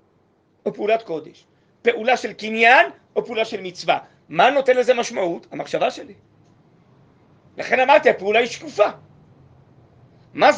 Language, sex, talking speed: Hebrew, male, 125 wpm